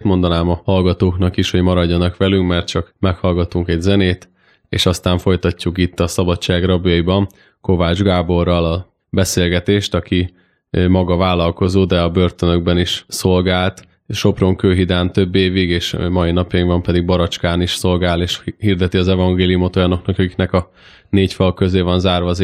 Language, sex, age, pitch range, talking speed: Hungarian, male, 20-39, 90-95 Hz, 145 wpm